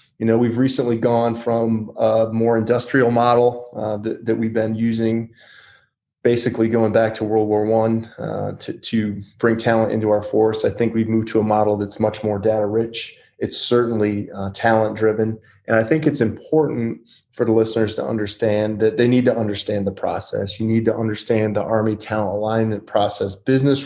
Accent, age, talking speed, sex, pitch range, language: American, 20-39, 190 wpm, male, 105-115 Hz, English